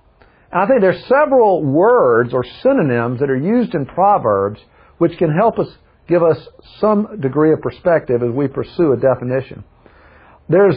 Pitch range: 140-200 Hz